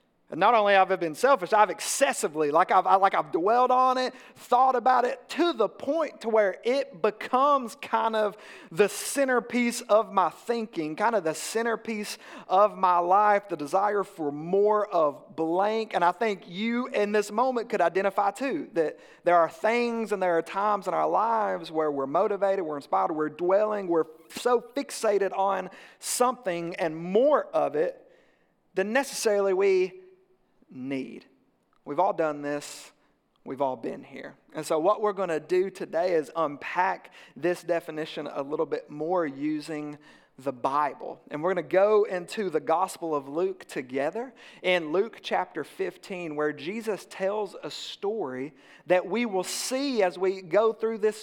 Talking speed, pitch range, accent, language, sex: 170 wpm, 175-235 Hz, American, English, male